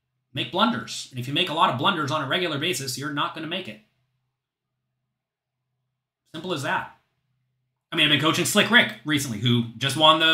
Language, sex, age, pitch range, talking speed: English, male, 30-49, 125-175 Hz, 205 wpm